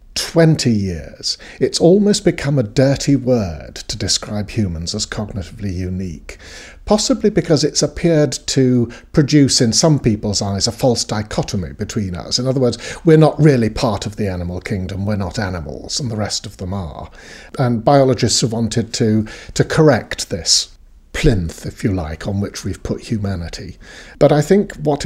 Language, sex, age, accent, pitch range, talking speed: English, male, 50-69, British, 95-135 Hz, 170 wpm